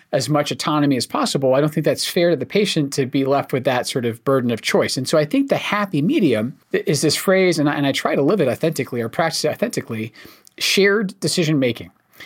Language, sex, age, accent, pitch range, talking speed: English, male, 40-59, American, 135-175 Hz, 230 wpm